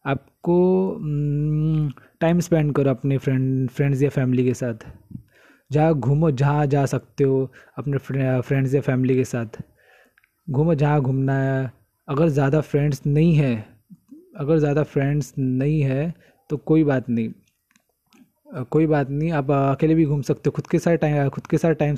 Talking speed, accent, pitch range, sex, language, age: 160 wpm, native, 130-155 Hz, male, Hindi, 20-39